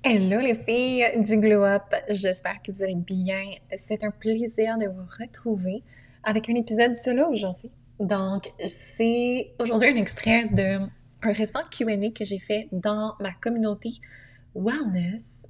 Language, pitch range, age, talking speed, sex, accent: French, 185-220 Hz, 20-39, 145 wpm, female, Canadian